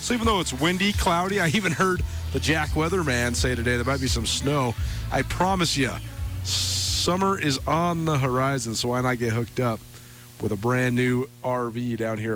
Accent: American